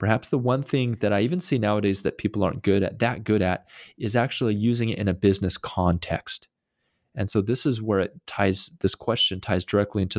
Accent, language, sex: American, English, male